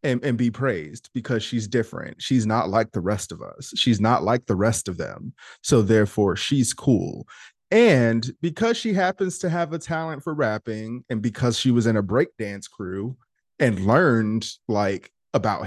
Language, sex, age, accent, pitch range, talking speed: English, male, 20-39, American, 110-140 Hz, 180 wpm